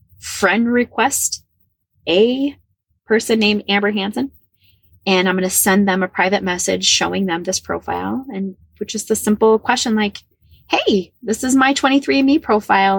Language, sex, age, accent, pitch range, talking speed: English, female, 20-39, American, 175-235 Hz, 150 wpm